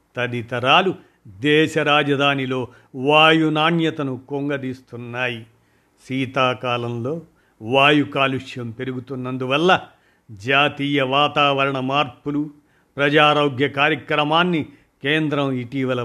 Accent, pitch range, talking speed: native, 125-150 Hz, 60 wpm